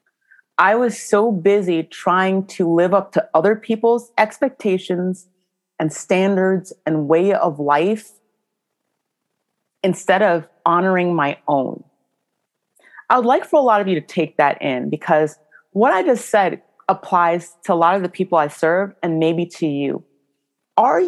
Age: 30-49